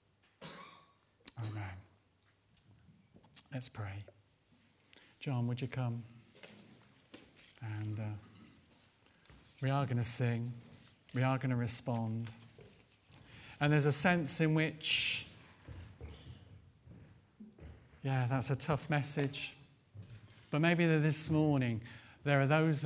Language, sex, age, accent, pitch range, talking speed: English, male, 50-69, British, 105-140 Hz, 100 wpm